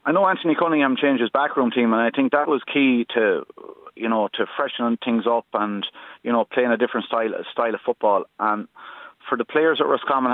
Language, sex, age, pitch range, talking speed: English, male, 30-49, 115-130 Hz, 215 wpm